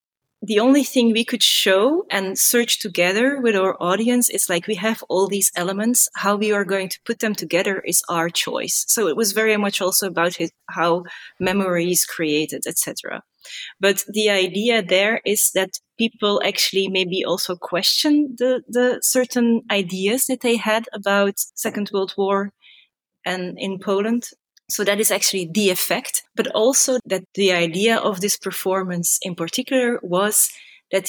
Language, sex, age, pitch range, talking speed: English, female, 20-39, 180-220 Hz, 160 wpm